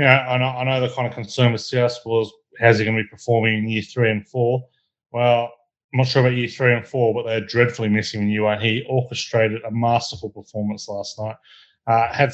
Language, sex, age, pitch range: English, male, 30-49, 105-120 Hz